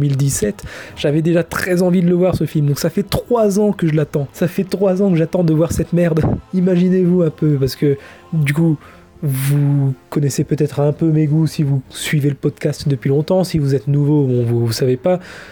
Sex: male